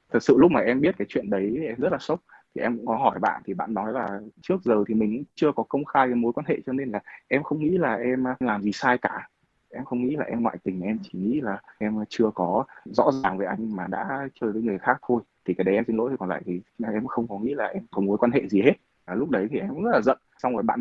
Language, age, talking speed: Vietnamese, 20-39, 300 wpm